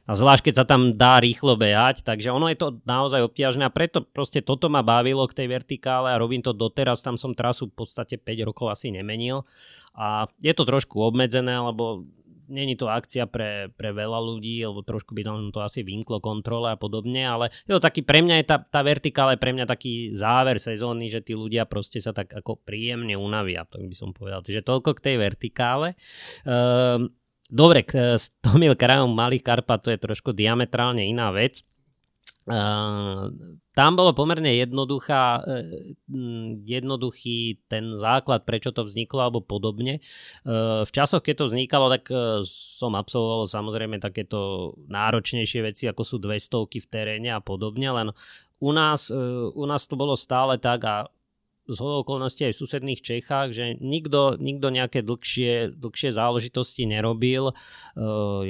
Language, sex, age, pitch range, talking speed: Slovak, male, 20-39, 110-130 Hz, 170 wpm